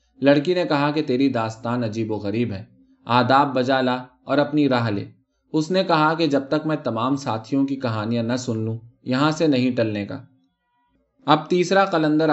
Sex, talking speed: male, 185 wpm